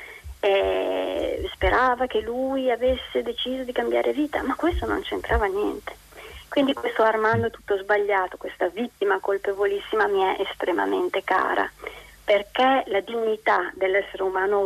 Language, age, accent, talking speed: Italian, 30-49, native, 125 wpm